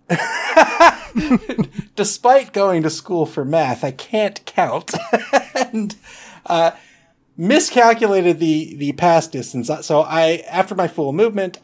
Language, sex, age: English, male, 30-49